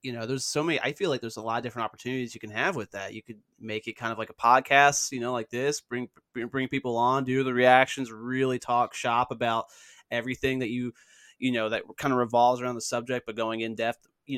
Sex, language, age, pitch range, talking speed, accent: male, English, 20-39, 120-150 Hz, 250 wpm, American